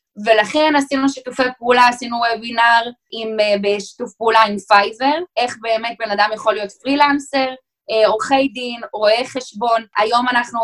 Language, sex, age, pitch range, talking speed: Hebrew, female, 10-29, 220-280 Hz, 130 wpm